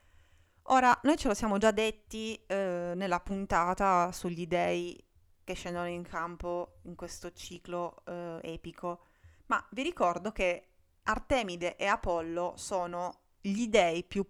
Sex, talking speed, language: female, 135 wpm, Italian